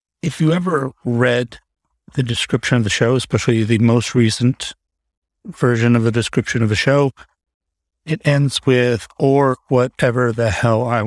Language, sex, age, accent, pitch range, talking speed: English, male, 40-59, American, 75-130 Hz, 150 wpm